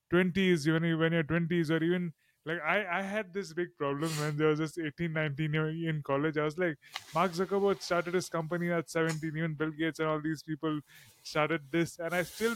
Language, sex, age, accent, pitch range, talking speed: English, male, 20-39, Indian, 155-190 Hz, 220 wpm